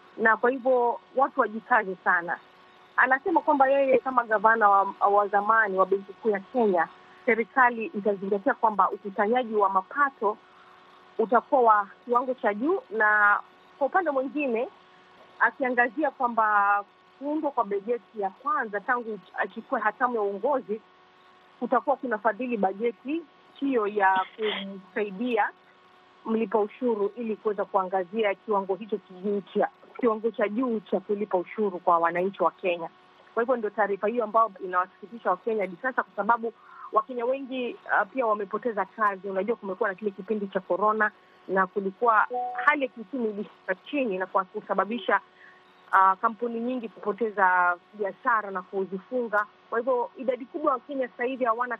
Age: 30-49